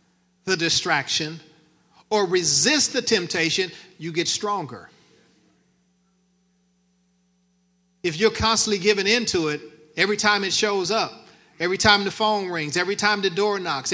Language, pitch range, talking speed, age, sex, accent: English, 165-210 Hz, 130 wpm, 40-59, male, American